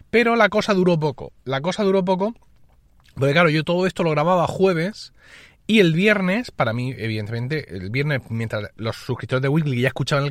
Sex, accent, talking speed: male, Spanish, 190 wpm